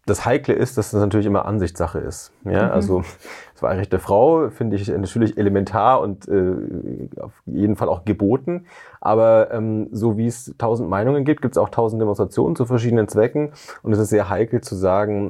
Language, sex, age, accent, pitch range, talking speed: German, male, 30-49, German, 100-125 Hz, 195 wpm